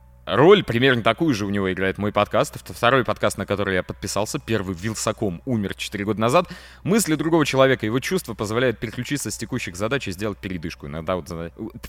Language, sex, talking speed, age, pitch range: Russian, male, 185 wpm, 20-39, 90-135 Hz